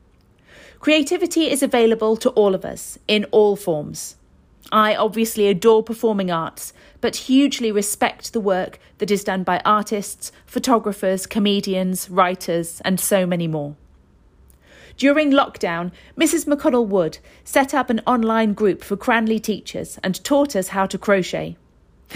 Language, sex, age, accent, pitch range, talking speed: English, female, 40-59, British, 180-230 Hz, 140 wpm